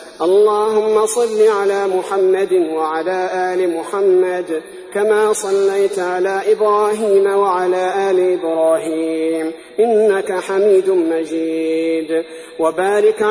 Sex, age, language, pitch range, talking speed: male, 50-69, Arabic, 175-215 Hz, 80 wpm